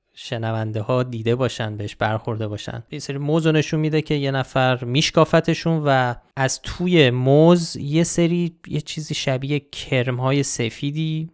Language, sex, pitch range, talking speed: Persian, male, 115-150 Hz, 150 wpm